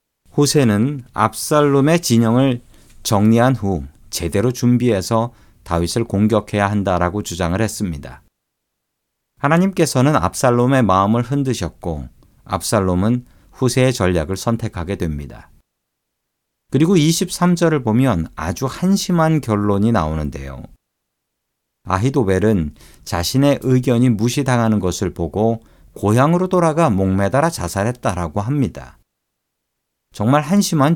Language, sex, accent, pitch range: Korean, male, native, 95-135 Hz